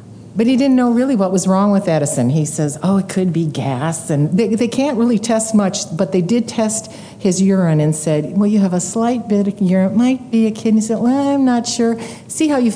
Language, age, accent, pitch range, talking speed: English, 50-69, American, 145-190 Hz, 255 wpm